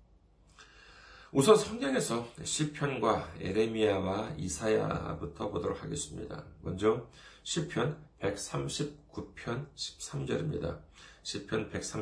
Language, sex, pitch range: Korean, male, 95-150 Hz